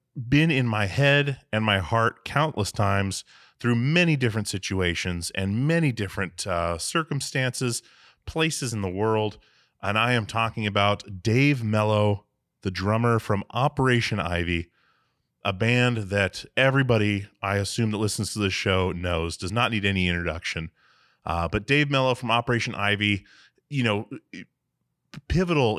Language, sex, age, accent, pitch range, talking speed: English, male, 30-49, American, 100-125 Hz, 140 wpm